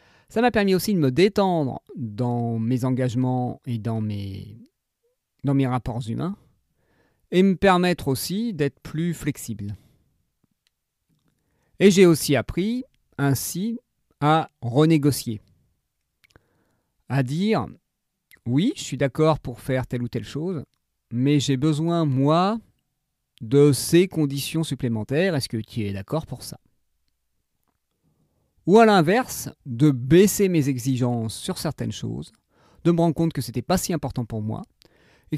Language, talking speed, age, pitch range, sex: French, 135 wpm, 40-59, 120-170 Hz, male